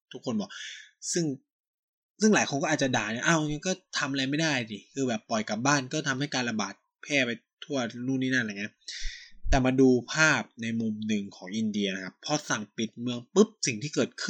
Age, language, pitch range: 20-39, Thai, 115-165 Hz